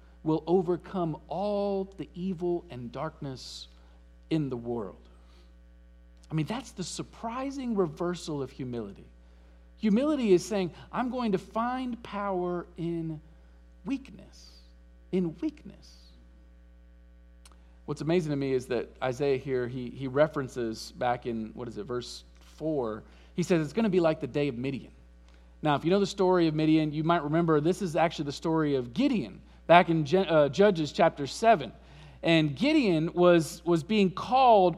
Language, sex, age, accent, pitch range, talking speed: English, male, 50-69, American, 140-215 Hz, 155 wpm